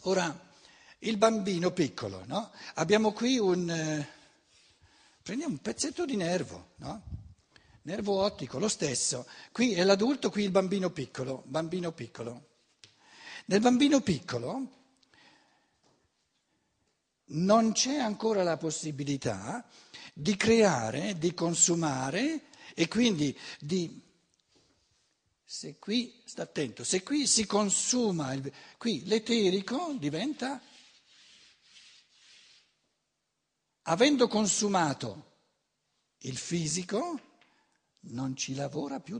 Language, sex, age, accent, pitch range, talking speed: Italian, male, 60-79, native, 150-230 Hz, 95 wpm